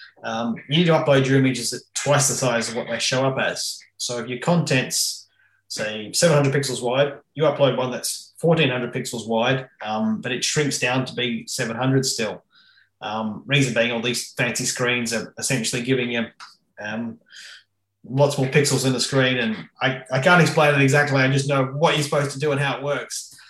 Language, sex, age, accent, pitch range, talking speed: English, male, 20-39, Australian, 115-135 Hz, 200 wpm